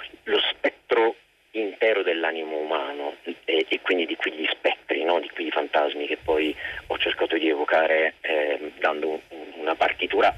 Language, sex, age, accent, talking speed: Italian, male, 40-59, native, 150 wpm